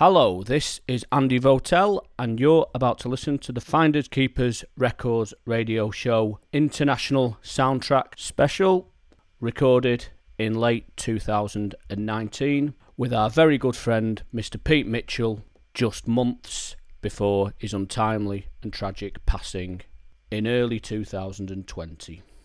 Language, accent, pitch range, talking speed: English, British, 105-130 Hz, 115 wpm